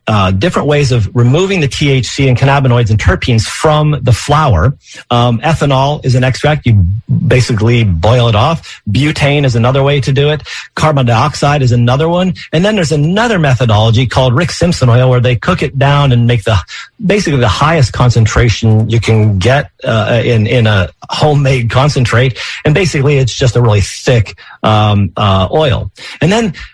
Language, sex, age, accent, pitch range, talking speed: English, male, 40-59, American, 115-145 Hz, 175 wpm